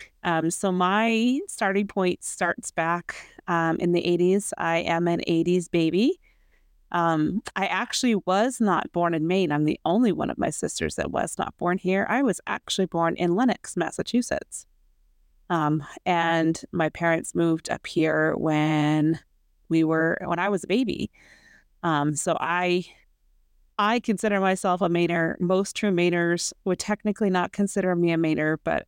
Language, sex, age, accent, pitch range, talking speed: English, female, 30-49, American, 165-205 Hz, 160 wpm